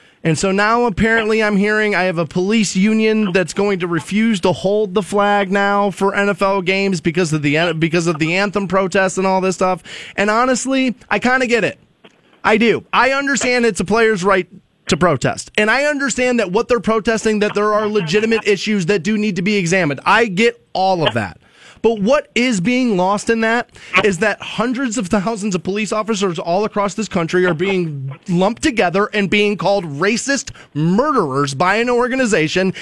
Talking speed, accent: 195 wpm, American